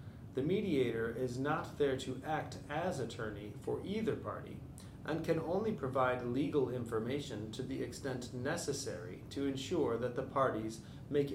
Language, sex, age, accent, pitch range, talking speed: English, male, 40-59, American, 115-145 Hz, 150 wpm